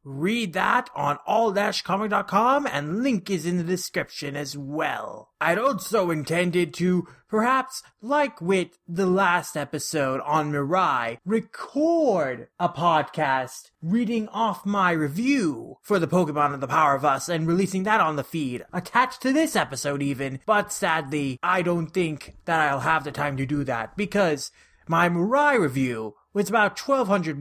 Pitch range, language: 155-225 Hz, English